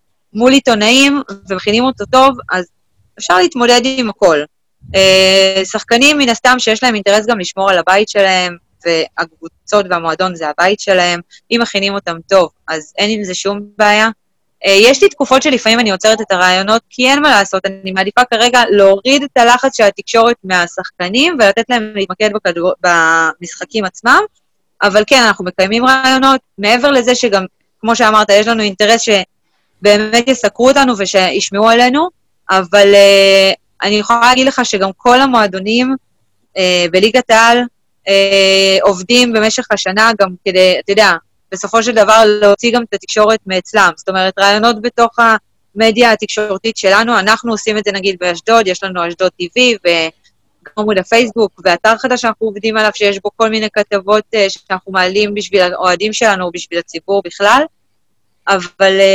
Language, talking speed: Hebrew, 155 wpm